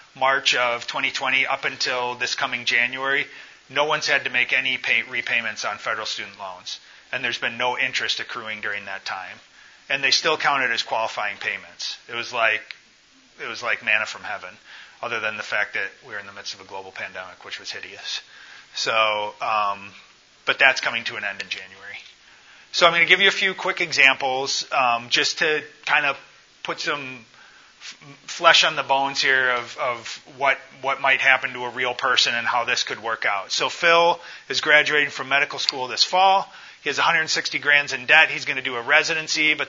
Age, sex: 30-49, male